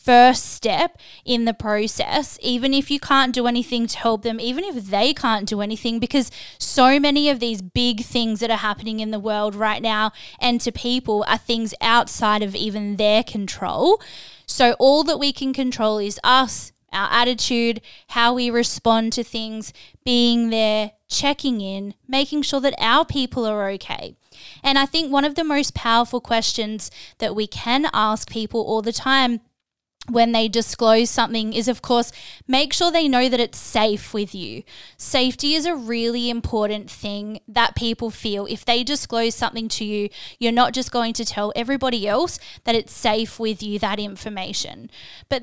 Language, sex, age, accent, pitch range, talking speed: English, female, 10-29, Australian, 215-255 Hz, 180 wpm